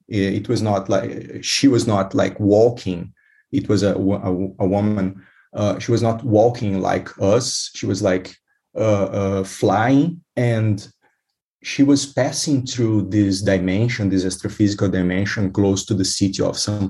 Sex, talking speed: male, 155 wpm